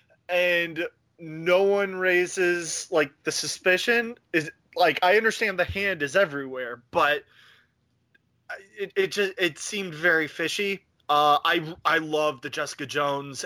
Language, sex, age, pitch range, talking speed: English, male, 20-39, 145-185 Hz, 135 wpm